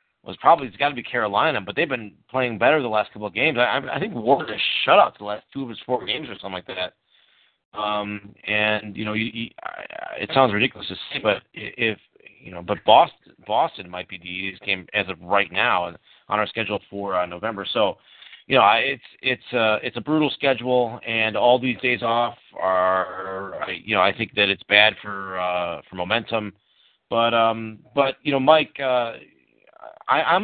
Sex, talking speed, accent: male, 210 wpm, American